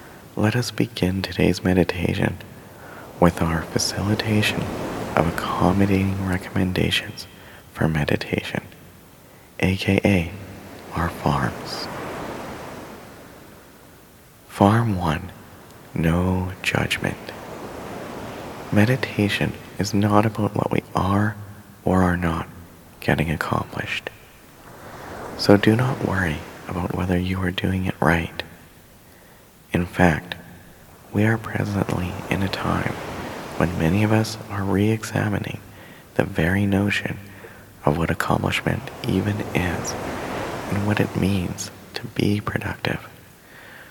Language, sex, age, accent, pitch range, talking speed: English, male, 30-49, American, 90-105 Hz, 100 wpm